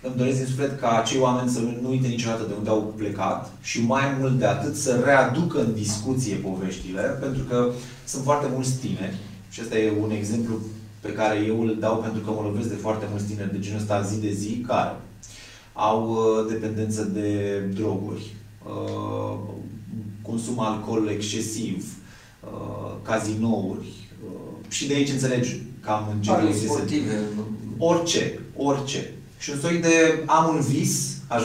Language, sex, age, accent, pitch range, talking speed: Romanian, male, 30-49, native, 105-130 Hz, 155 wpm